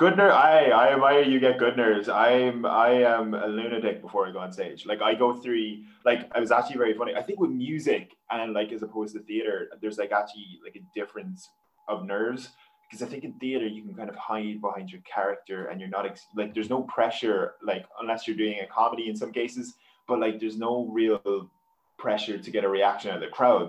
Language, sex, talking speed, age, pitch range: English, male, 230 wpm, 20-39, 105-140 Hz